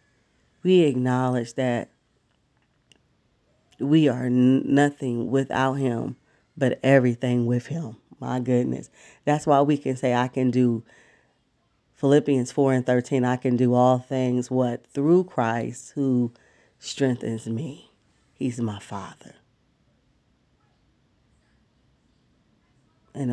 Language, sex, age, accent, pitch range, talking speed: English, female, 40-59, American, 120-140 Hz, 105 wpm